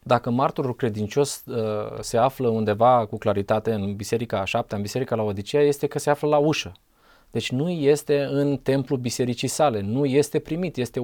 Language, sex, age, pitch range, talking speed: Romanian, male, 20-39, 125-185 Hz, 185 wpm